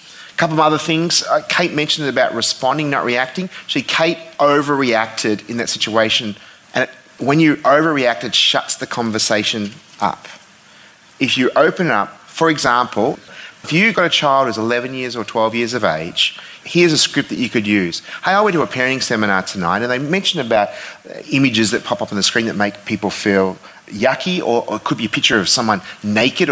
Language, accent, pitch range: English, Australian, 115-170 Hz